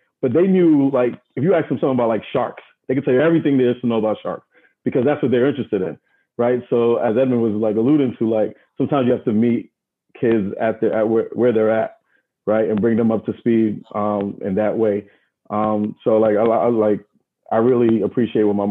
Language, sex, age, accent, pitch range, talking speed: English, male, 30-49, American, 100-115 Hz, 235 wpm